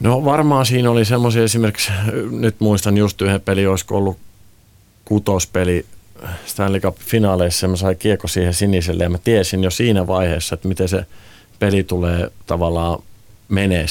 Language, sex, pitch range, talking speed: Finnish, male, 85-100 Hz, 150 wpm